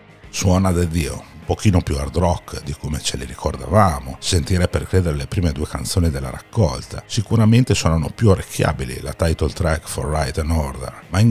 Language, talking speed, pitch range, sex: Italian, 190 wpm, 75-95 Hz, male